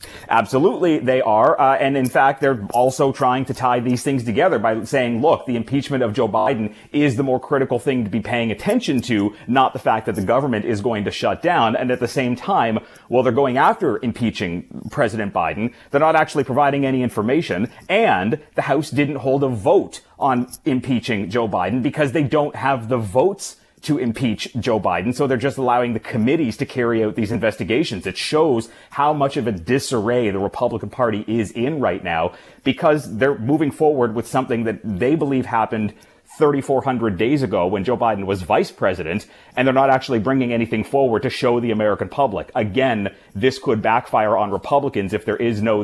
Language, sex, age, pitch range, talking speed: English, male, 30-49, 115-135 Hz, 195 wpm